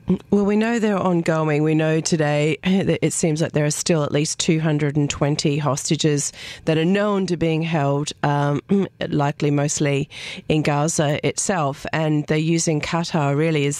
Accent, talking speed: Australian, 160 wpm